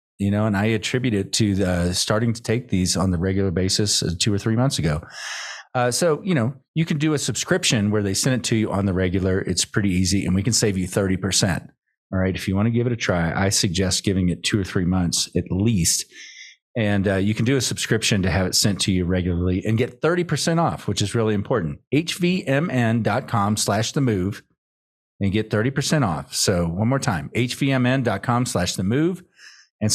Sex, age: male, 40-59